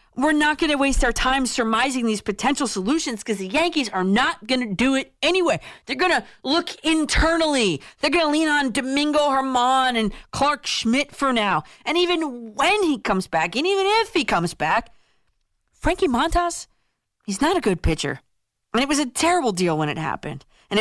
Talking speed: 195 wpm